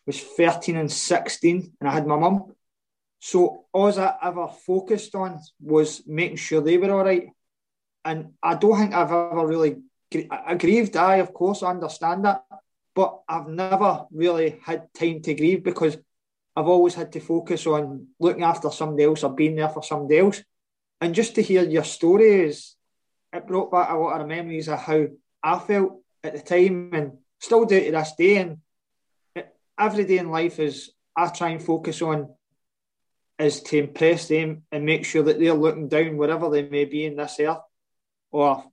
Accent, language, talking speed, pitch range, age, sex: British, English, 185 wpm, 155-180 Hz, 20-39, male